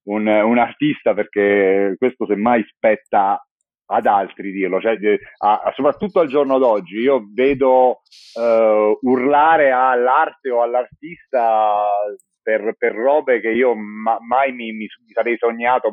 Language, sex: Italian, male